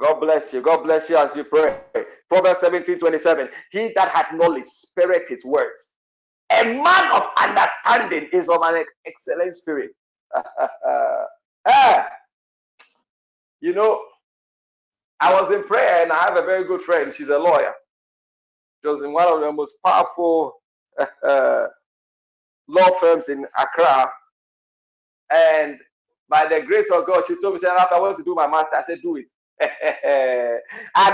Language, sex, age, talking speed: English, male, 50-69, 155 wpm